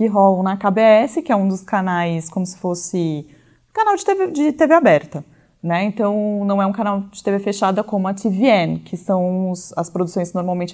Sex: female